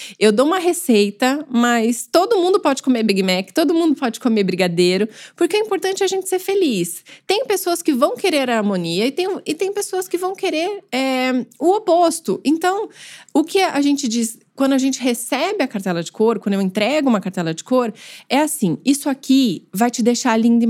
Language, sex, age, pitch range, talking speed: Portuguese, female, 20-39, 195-275 Hz, 200 wpm